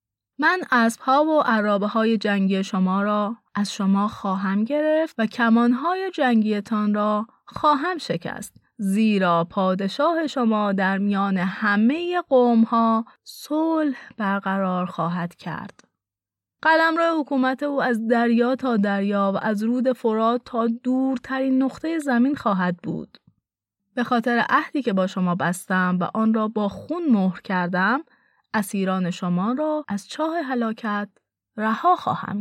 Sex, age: female, 30-49